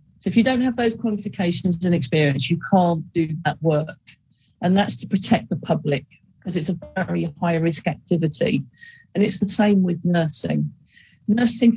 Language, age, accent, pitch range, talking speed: English, 40-59, British, 160-195 Hz, 175 wpm